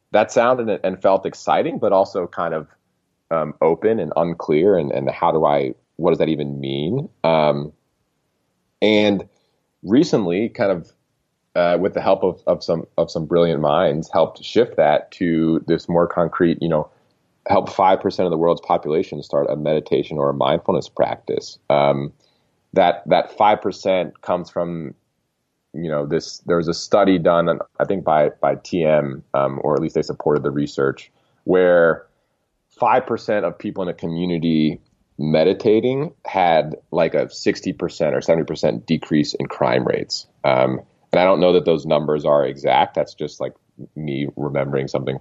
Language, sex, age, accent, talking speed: English, male, 30-49, American, 165 wpm